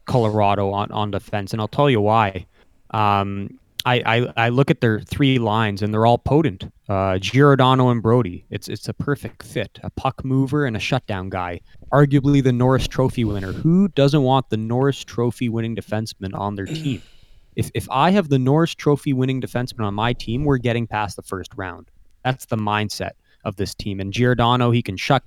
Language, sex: English, male